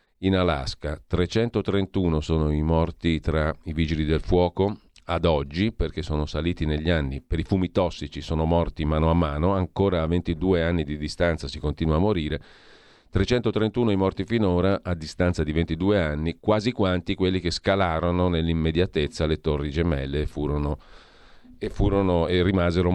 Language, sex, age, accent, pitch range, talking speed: Italian, male, 40-59, native, 80-95 Hz, 155 wpm